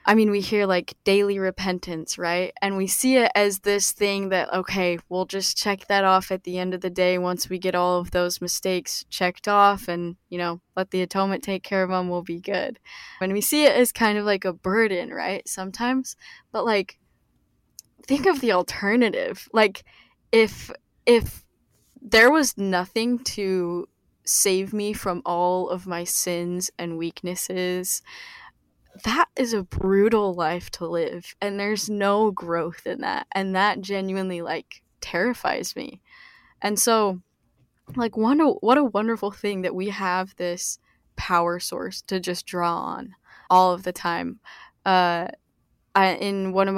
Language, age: English, 10-29